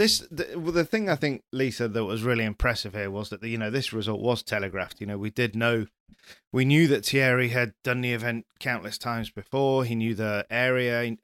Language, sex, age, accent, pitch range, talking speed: English, male, 30-49, British, 110-135 Hz, 230 wpm